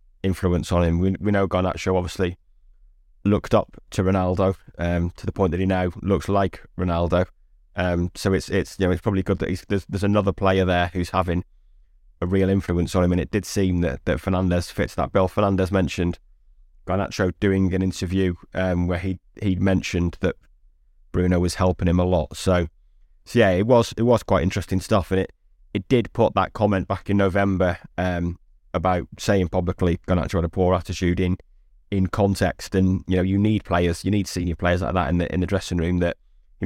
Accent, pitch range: British, 85-95 Hz